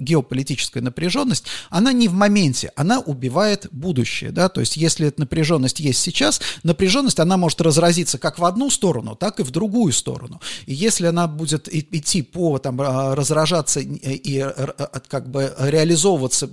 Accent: native